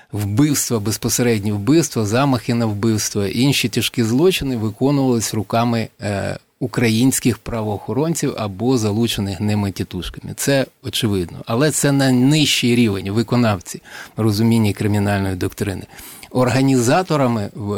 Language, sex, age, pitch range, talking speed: Ukrainian, male, 30-49, 105-125 Hz, 100 wpm